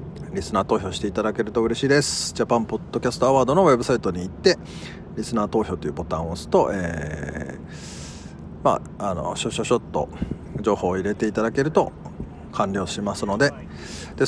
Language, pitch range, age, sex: Japanese, 90-145 Hz, 40-59, male